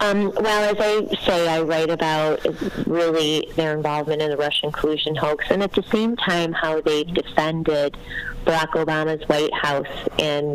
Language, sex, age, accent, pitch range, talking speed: English, female, 30-49, American, 150-170 Hz, 165 wpm